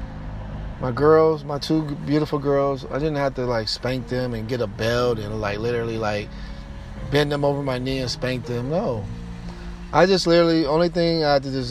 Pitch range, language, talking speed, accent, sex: 130-165 Hz, English, 200 wpm, American, male